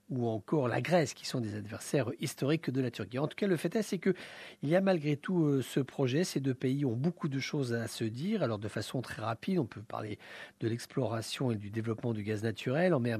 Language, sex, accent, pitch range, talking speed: English, male, French, 120-165 Hz, 250 wpm